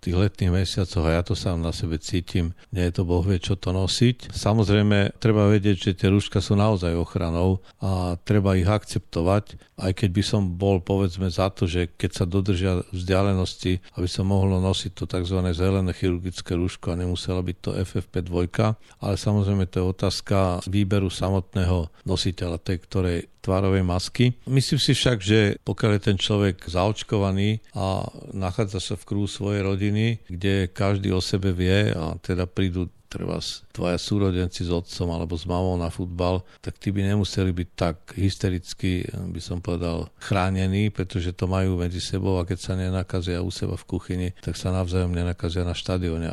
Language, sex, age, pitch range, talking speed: Slovak, male, 50-69, 90-100 Hz, 175 wpm